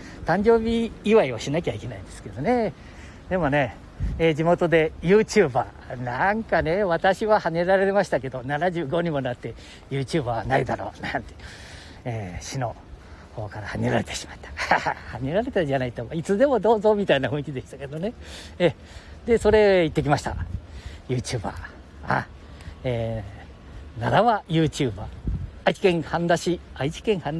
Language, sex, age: Japanese, male, 50-69